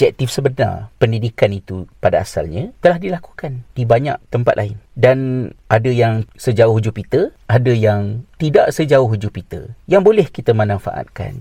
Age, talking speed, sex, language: 50-69, 135 wpm, male, Malay